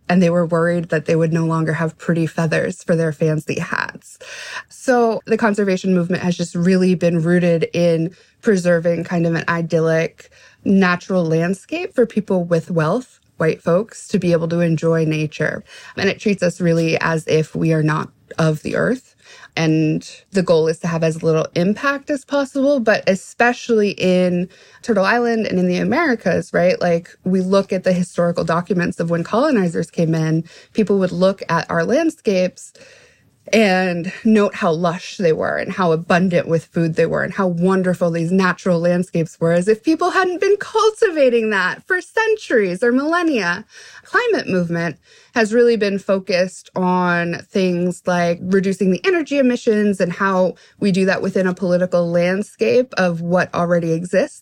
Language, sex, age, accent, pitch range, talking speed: English, female, 20-39, American, 170-215 Hz, 170 wpm